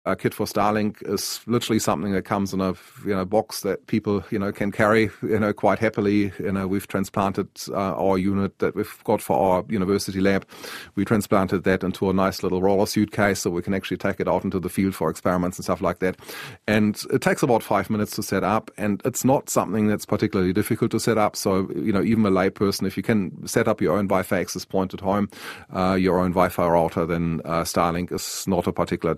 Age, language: 30-49, English